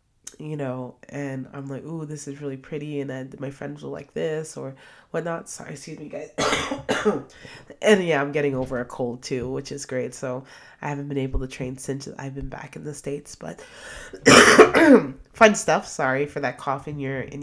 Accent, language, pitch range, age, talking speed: American, English, 140-180 Hz, 30-49, 200 wpm